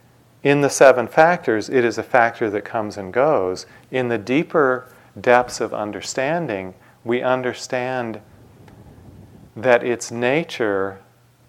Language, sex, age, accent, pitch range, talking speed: English, male, 40-59, American, 100-125 Hz, 120 wpm